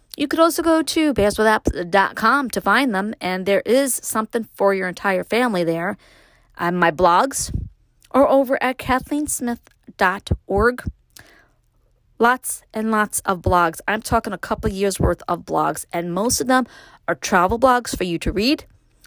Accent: American